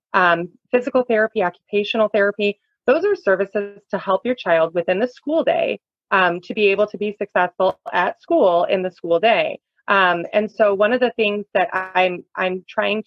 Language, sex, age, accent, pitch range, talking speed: English, female, 30-49, American, 180-220 Hz, 185 wpm